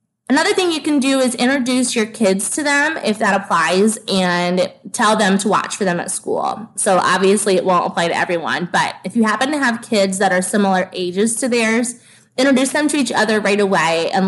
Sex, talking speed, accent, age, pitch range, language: female, 215 wpm, American, 20-39, 185-235 Hz, English